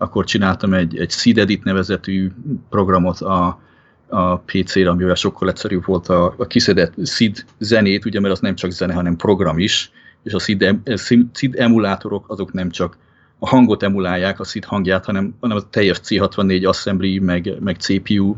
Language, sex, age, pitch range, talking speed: Hungarian, male, 30-49, 95-110 Hz, 165 wpm